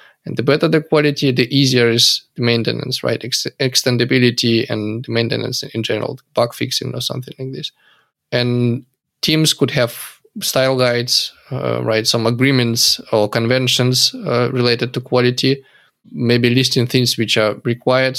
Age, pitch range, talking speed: 20-39, 115-135 Hz, 150 wpm